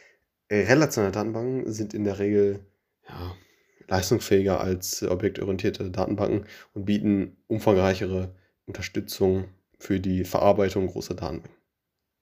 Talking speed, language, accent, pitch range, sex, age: 95 wpm, German, German, 95-105 Hz, male, 20-39